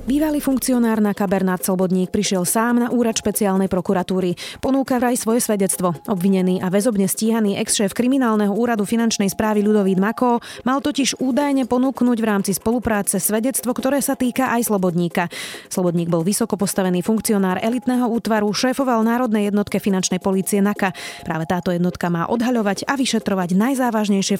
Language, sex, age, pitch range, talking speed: Slovak, female, 20-39, 185-235 Hz, 150 wpm